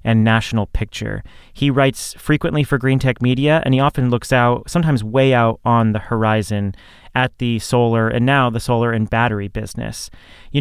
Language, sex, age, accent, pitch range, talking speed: English, male, 30-49, American, 110-140 Hz, 180 wpm